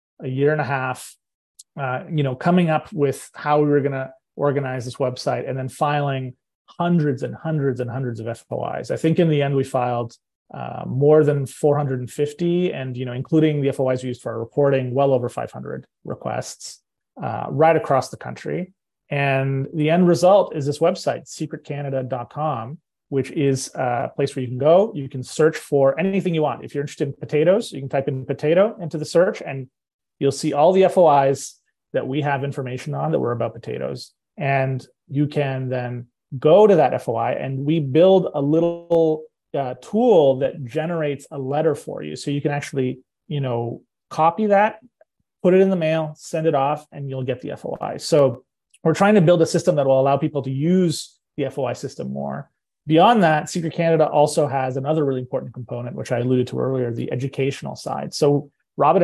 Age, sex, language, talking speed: 30-49, male, English, 195 wpm